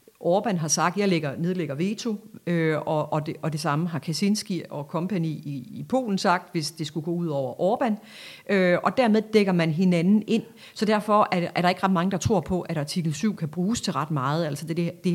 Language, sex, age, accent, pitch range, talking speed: Danish, female, 40-59, native, 150-190 Hz, 200 wpm